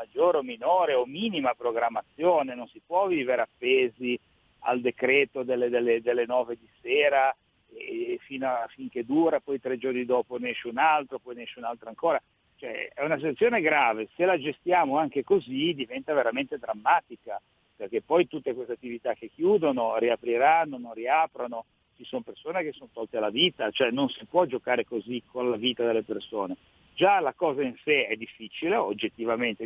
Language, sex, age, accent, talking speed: Italian, male, 50-69, native, 180 wpm